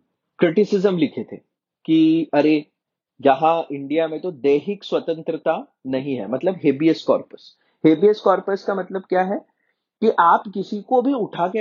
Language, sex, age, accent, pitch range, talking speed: English, male, 30-49, Indian, 155-205 Hz, 150 wpm